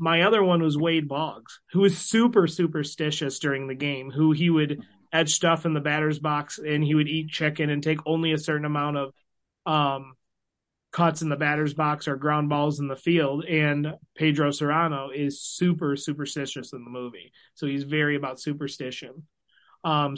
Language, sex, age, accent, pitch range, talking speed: English, male, 30-49, American, 140-160 Hz, 180 wpm